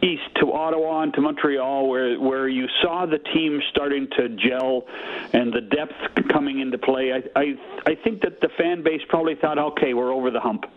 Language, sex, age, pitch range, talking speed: English, male, 50-69, 130-160 Hz, 200 wpm